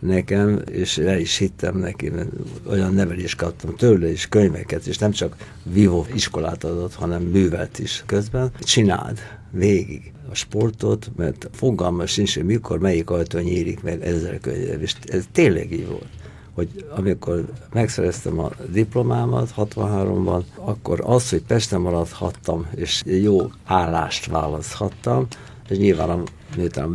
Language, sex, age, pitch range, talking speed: Hungarian, male, 60-79, 85-110 Hz, 135 wpm